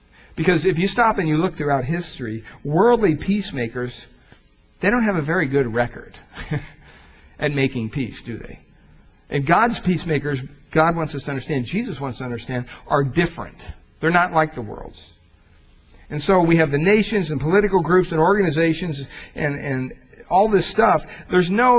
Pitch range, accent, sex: 120-185 Hz, American, male